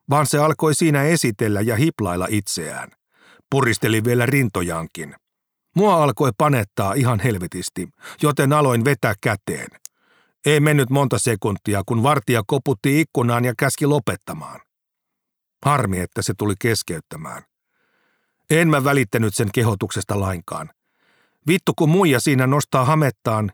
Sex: male